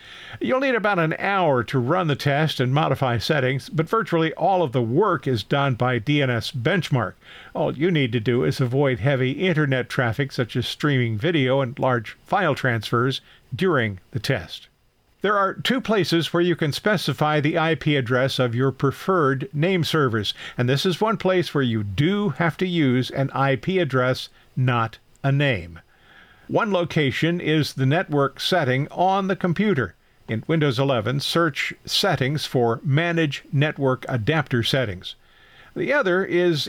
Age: 50-69